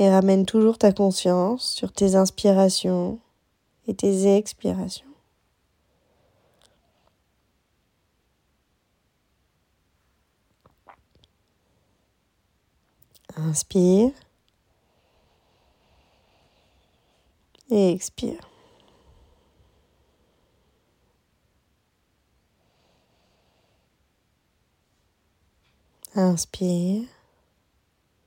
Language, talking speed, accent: French, 30 wpm, French